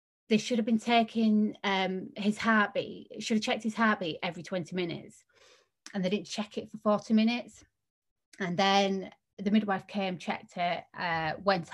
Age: 30-49